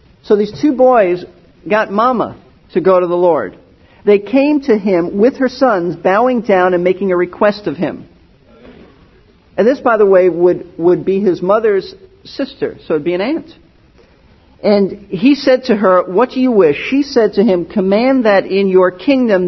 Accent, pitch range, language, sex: American, 175-230 Hz, English, male